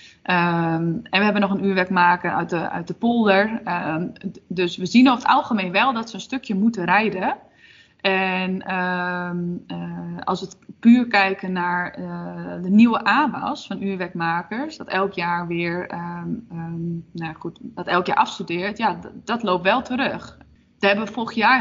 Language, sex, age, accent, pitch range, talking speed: Dutch, female, 20-39, Dutch, 180-215 Hz, 165 wpm